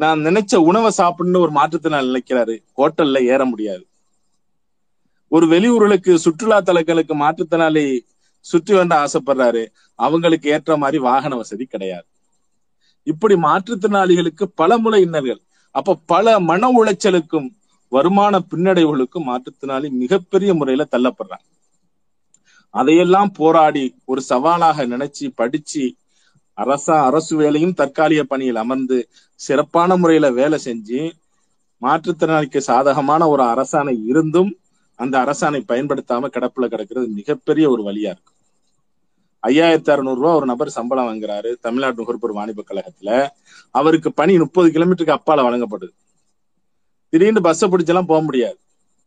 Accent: native